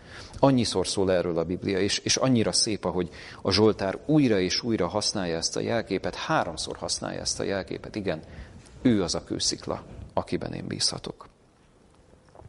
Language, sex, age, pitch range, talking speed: Hungarian, male, 40-59, 95-110 Hz, 155 wpm